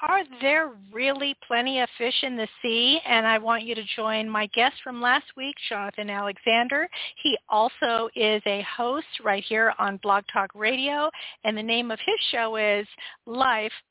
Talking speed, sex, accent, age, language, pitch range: 175 wpm, female, American, 50-69, English, 210-275 Hz